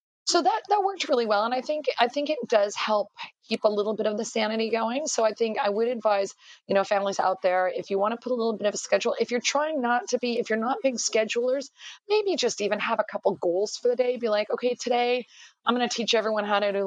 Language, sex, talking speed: English, female, 275 wpm